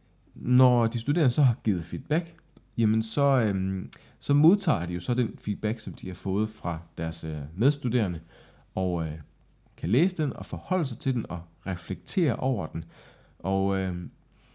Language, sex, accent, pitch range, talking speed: Danish, male, native, 90-115 Hz, 155 wpm